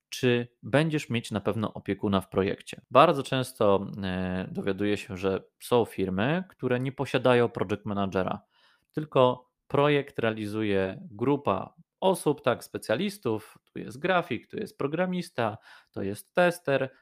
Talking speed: 125 wpm